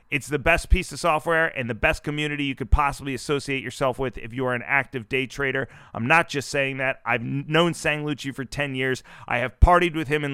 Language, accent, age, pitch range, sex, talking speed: English, American, 30-49, 135-175 Hz, male, 240 wpm